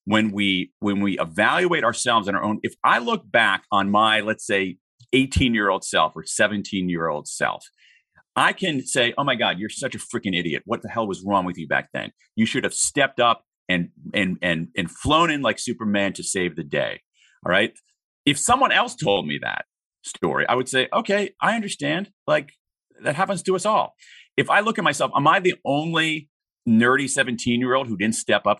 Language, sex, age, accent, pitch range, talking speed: English, male, 40-59, American, 110-155 Hz, 205 wpm